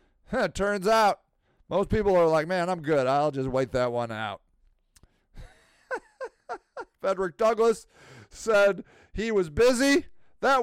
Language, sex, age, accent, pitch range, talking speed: English, male, 40-59, American, 145-215 Hz, 130 wpm